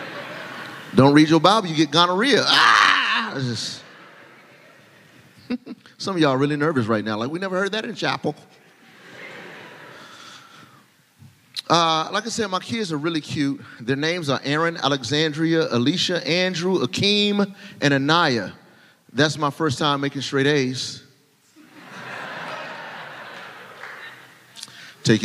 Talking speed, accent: 120 wpm, American